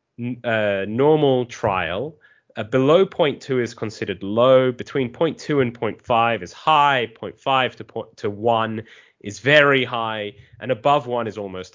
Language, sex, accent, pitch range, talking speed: English, male, British, 105-135 Hz, 140 wpm